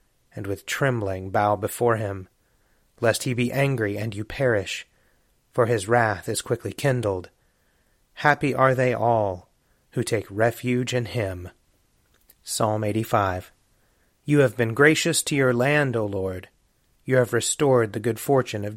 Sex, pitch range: male, 105-135 Hz